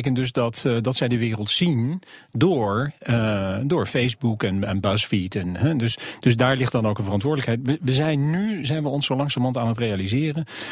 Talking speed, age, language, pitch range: 200 wpm, 40-59, Dutch, 100-130 Hz